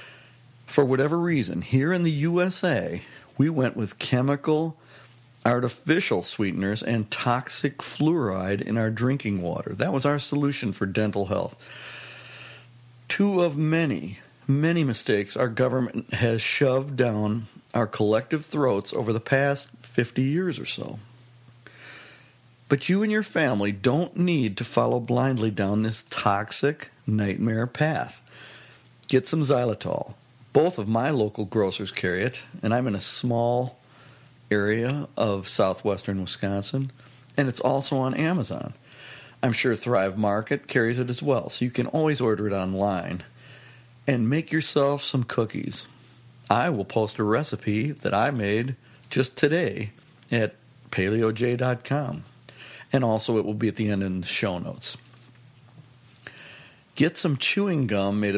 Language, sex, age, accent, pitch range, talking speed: English, male, 50-69, American, 110-140 Hz, 140 wpm